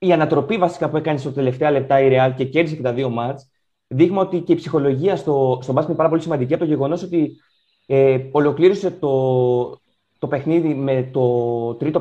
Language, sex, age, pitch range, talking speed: Greek, male, 20-39, 130-165 Hz, 200 wpm